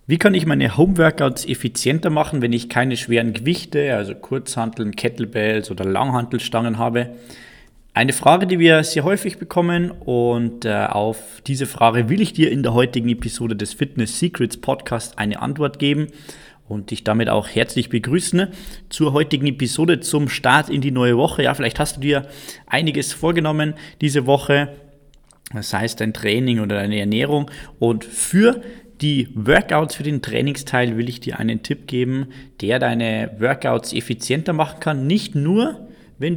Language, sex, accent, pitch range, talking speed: German, male, German, 115-155 Hz, 165 wpm